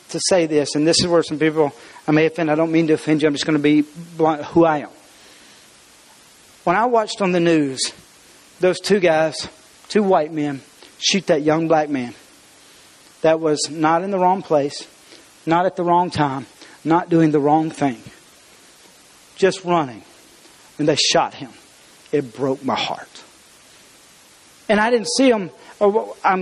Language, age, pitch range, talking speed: English, 40-59, 160-215 Hz, 175 wpm